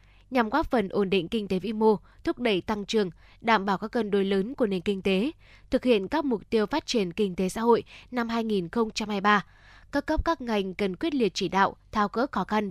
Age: 10-29